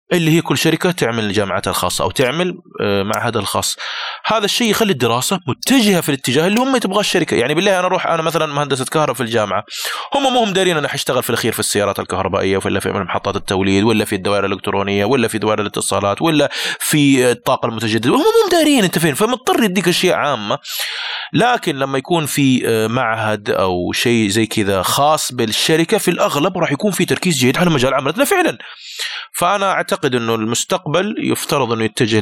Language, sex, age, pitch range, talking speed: Arabic, male, 20-39, 110-175 Hz, 180 wpm